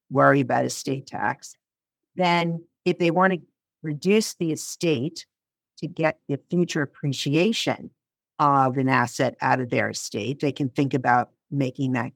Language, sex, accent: English, female, American